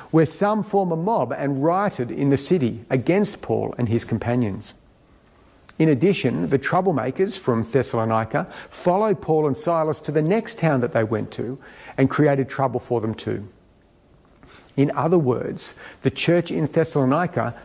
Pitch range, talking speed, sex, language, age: 120-170 Hz, 155 wpm, male, English, 50-69